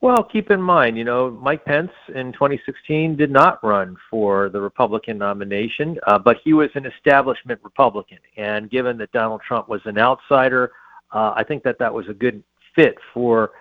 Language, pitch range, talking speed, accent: English, 110-135 Hz, 185 wpm, American